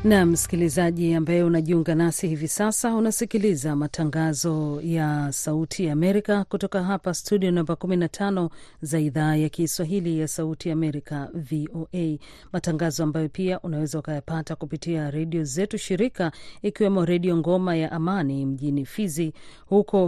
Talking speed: 120 wpm